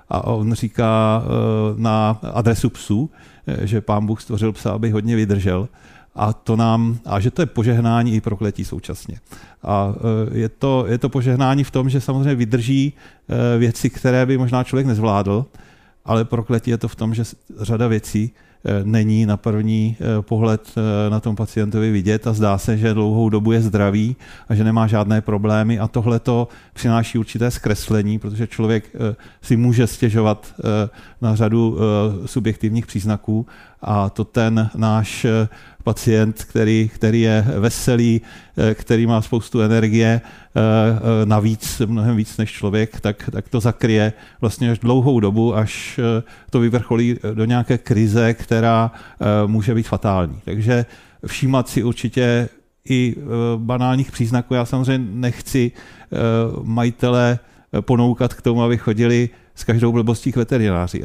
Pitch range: 110-120 Hz